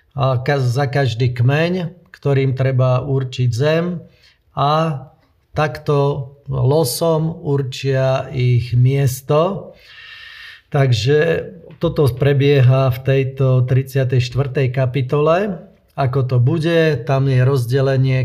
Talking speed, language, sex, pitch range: 90 wpm, Slovak, male, 130-150 Hz